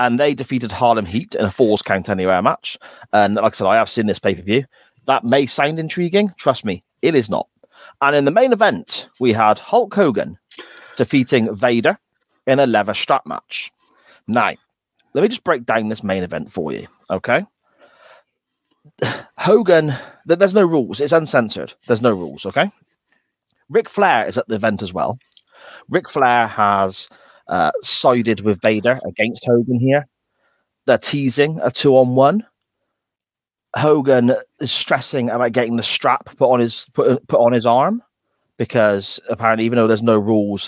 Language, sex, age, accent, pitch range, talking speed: English, male, 30-49, British, 110-150 Hz, 160 wpm